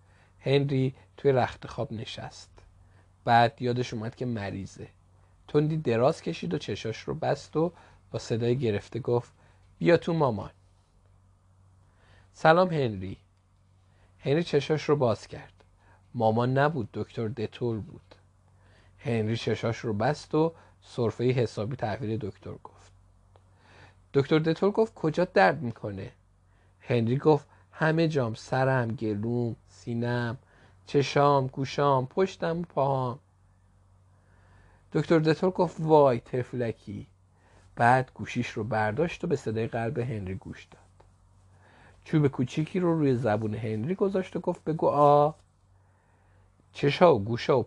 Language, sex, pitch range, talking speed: Persian, male, 95-135 Hz, 120 wpm